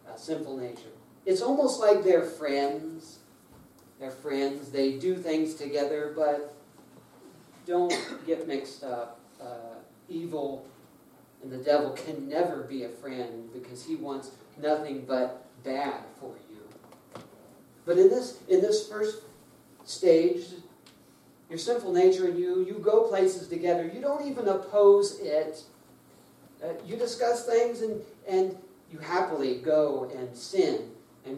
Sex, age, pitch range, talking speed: male, 40-59, 145-240 Hz, 130 wpm